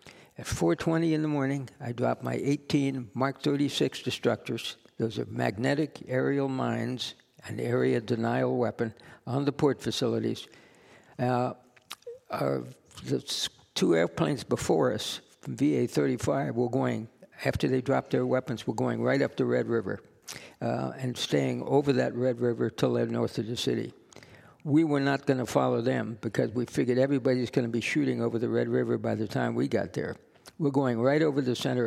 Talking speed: 170 wpm